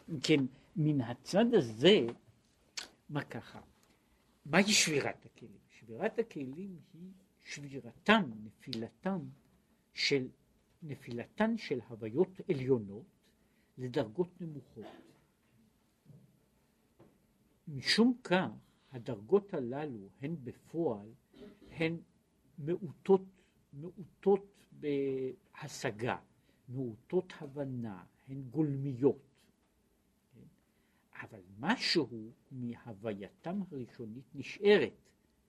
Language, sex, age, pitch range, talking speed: Hebrew, male, 60-79, 125-190 Hz, 65 wpm